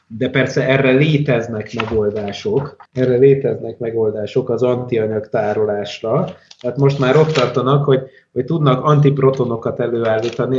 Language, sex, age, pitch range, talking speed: Hungarian, male, 30-49, 110-140 Hz, 115 wpm